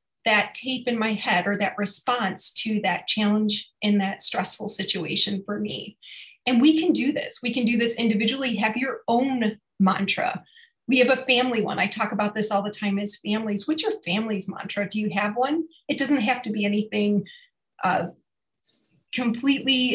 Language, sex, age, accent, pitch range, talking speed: English, female, 30-49, American, 205-250 Hz, 185 wpm